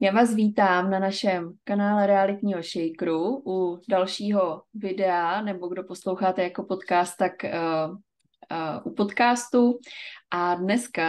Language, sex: Czech, female